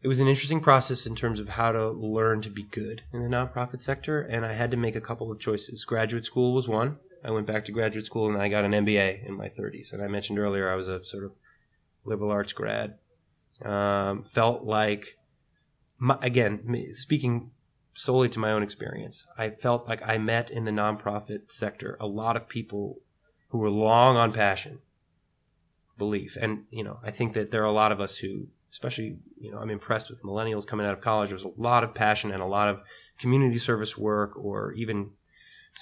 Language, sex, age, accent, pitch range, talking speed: English, male, 30-49, American, 105-120 Hz, 210 wpm